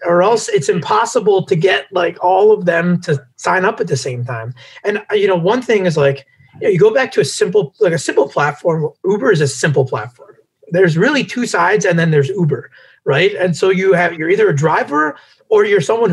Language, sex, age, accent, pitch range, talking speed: English, male, 30-49, American, 145-215 Hz, 225 wpm